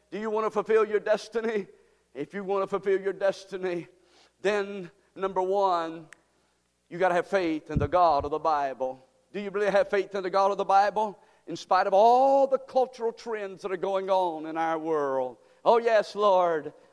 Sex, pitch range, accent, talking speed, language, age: male, 185-215 Hz, American, 200 wpm, English, 50-69